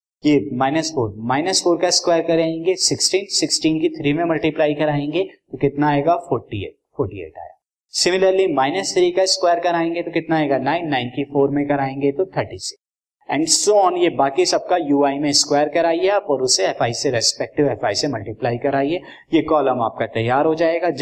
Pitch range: 135-170 Hz